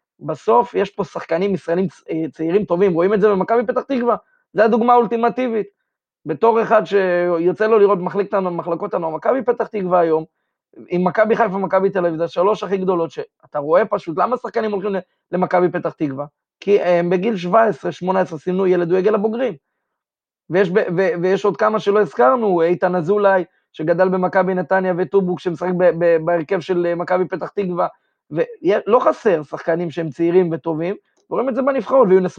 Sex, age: male, 20-39